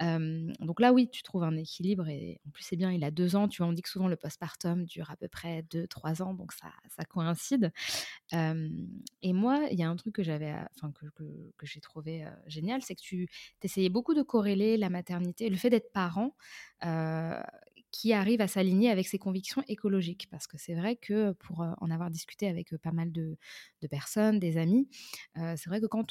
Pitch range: 165-215 Hz